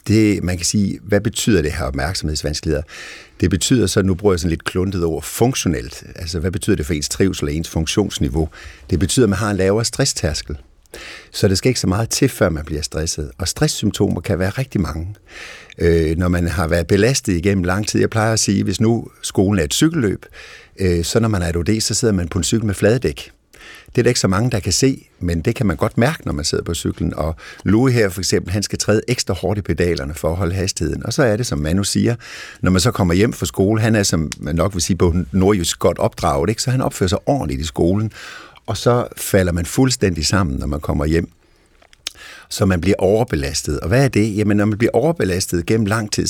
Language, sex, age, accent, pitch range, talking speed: Danish, male, 60-79, native, 85-110 Hz, 240 wpm